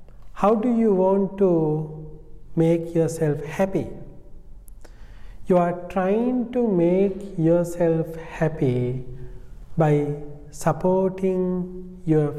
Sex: male